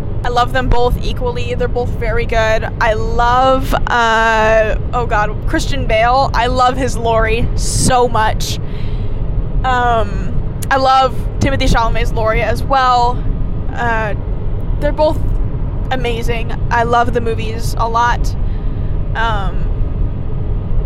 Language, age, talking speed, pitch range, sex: English, 10-29, 120 wpm, 105-125 Hz, female